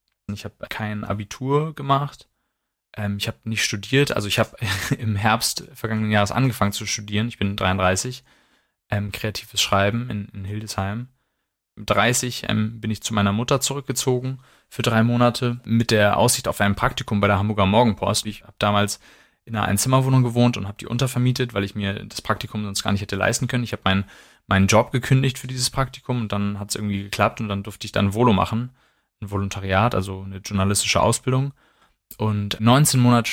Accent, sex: German, male